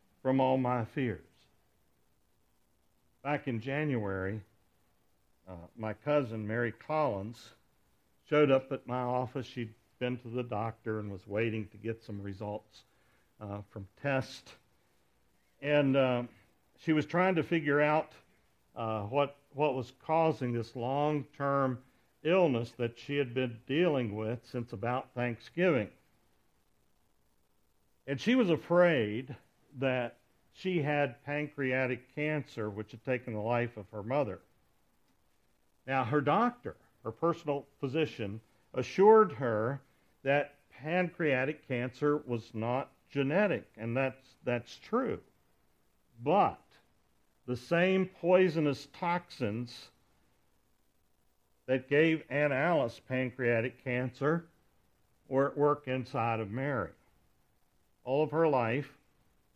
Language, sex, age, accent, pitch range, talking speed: English, male, 60-79, American, 110-145 Hz, 115 wpm